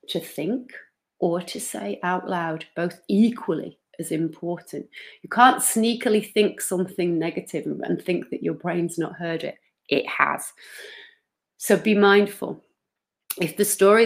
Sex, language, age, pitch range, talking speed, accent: female, English, 30-49, 165-210 Hz, 140 wpm, British